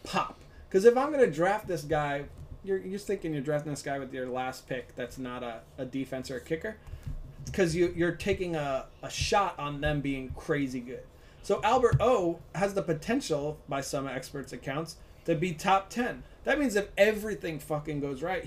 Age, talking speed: 20-39, 200 wpm